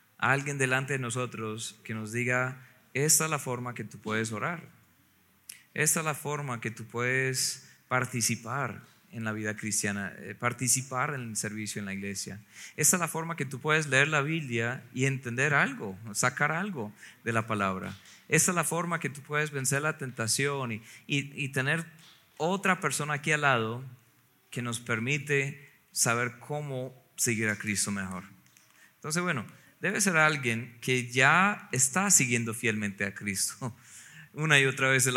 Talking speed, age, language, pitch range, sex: 165 wpm, 30-49, Spanish, 110-140 Hz, male